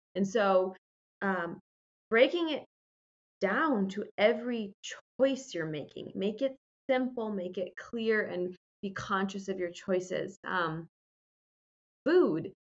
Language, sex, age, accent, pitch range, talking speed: English, female, 20-39, American, 185-250 Hz, 115 wpm